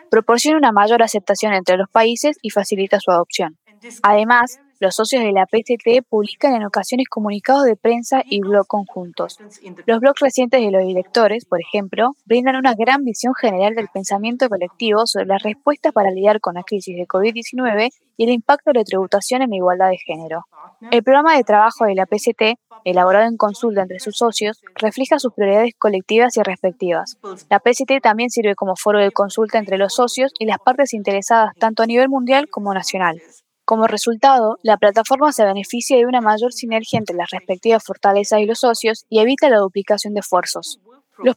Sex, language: female, English